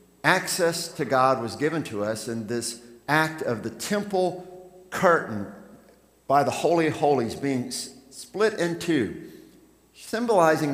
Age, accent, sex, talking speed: 50-69, American, male, 135 wpm